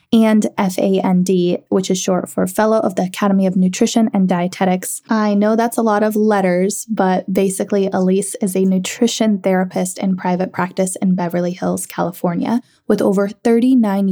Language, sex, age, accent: English, female, 20-39, American